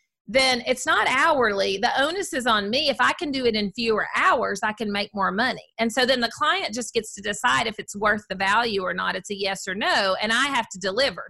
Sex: female